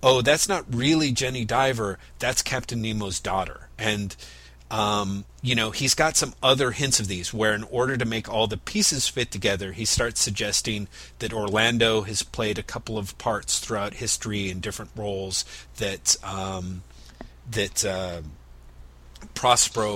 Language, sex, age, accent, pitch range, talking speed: English, male, 40-59, American, 100-120 Hz, 155 wpm